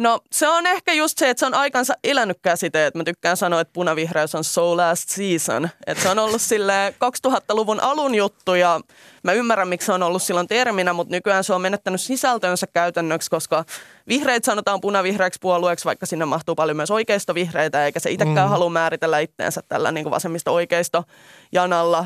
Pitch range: 165-195 Hz